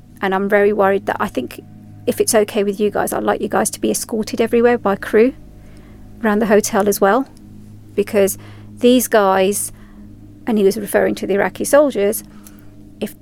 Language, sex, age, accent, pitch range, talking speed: English, female, 40-59, British, 195-235 Hz, 180 wpm